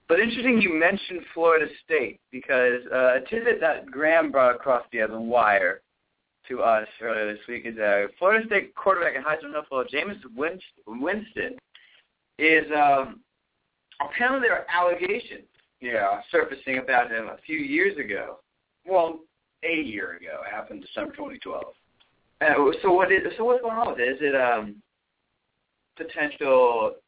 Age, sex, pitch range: 30-49, male, 130-210 Hz